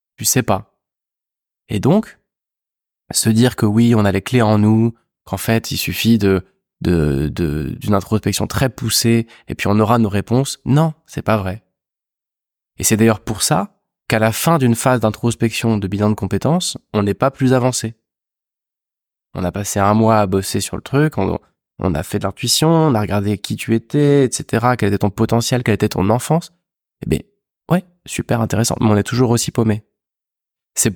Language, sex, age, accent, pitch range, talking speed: French, male, 20-39, French, 105-130 Hz, 195 wpm